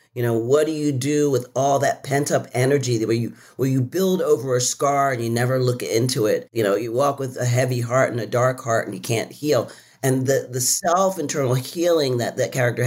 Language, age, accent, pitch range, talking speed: English, 40-59, American, 115-145 Hz, 245 wpm